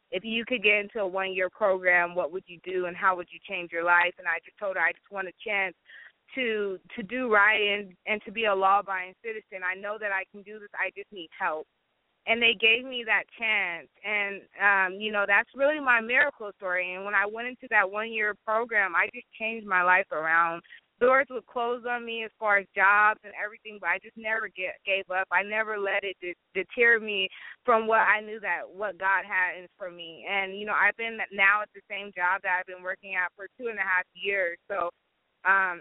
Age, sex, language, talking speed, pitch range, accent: 20-39, female, English, 230 wpm, 185-220 Hz, American